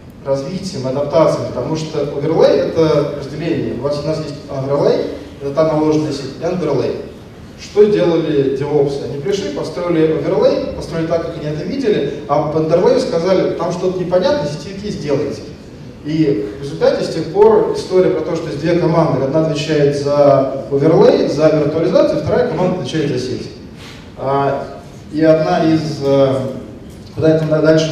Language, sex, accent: Russian, male, native